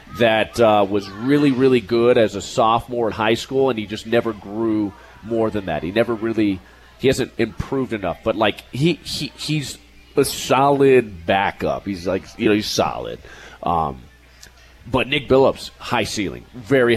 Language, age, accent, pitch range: English, 30-49, American, 100-125 Hz